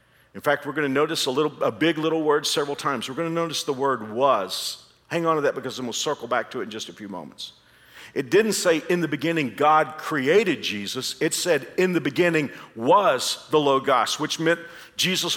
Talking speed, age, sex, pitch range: 225 wpm, 50-69, male, 130-160 Hz